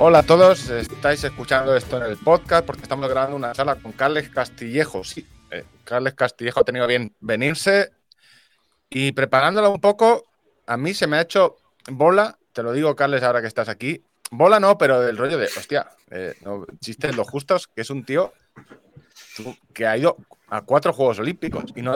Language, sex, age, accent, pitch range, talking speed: Spanish, male, 30-49, Spanish, 115-155 Hz, 190 wpm